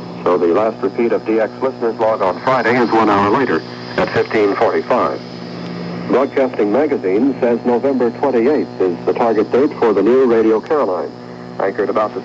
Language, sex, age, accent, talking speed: English, male, 60-79, American, 160 wpm